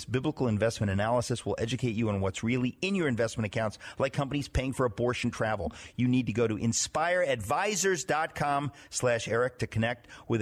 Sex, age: male, 50-69